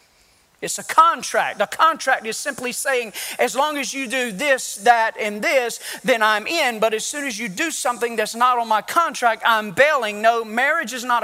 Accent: American